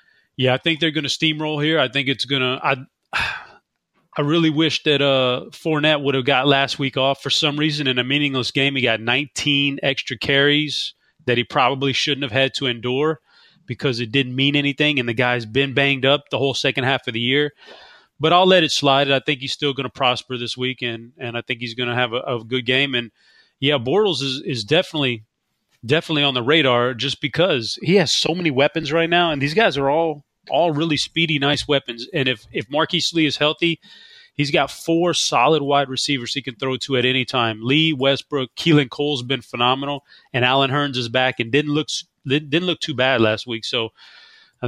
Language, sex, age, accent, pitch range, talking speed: English, male, 30-49, American, 125-150 Hz, 220 wpm